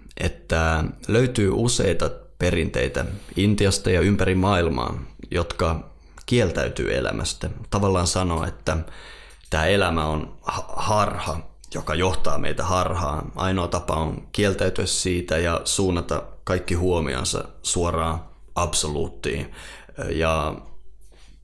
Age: 20-39